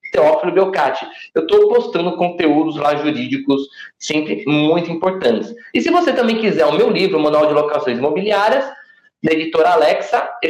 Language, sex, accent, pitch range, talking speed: Portuguese, male, Brazilian, 180-275 Hz, 155 wpm